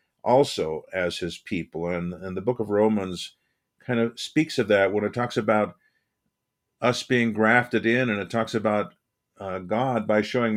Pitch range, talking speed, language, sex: 100-115 Hz, 175 wpm, English, male